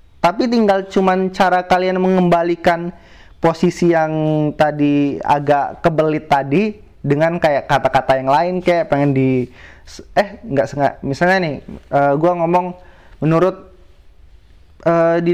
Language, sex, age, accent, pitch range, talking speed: Indonesian, male, 30-49, native, 130-175 Hz, 115 wpm